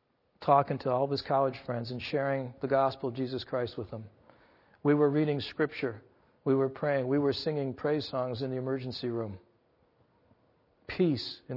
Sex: male